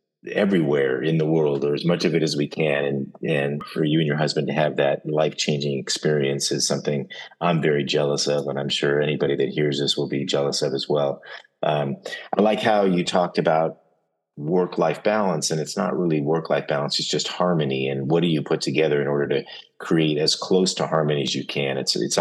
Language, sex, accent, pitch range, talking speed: English, male, American, 70-80 Hz, 215 wpm